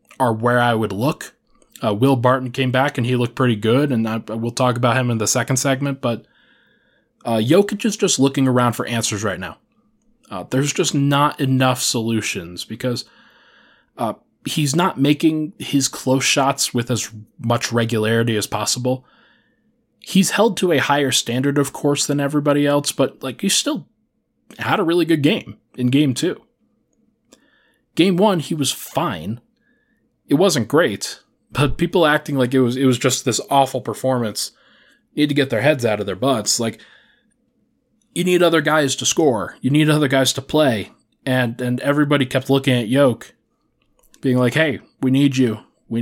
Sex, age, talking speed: male, 20-39, 175 wpm